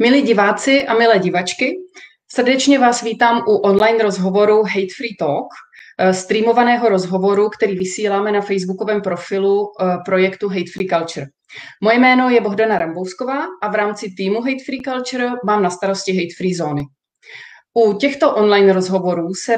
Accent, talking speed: native, 145 wpm